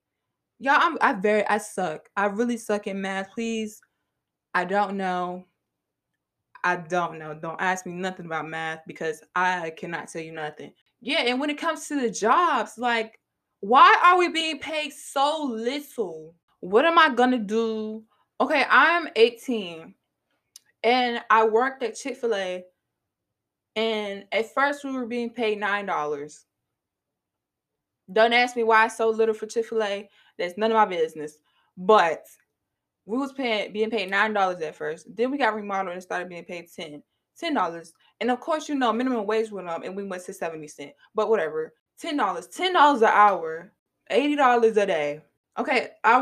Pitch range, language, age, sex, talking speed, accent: 180-245 Hz, English, 20-39, female, 165 wpm, American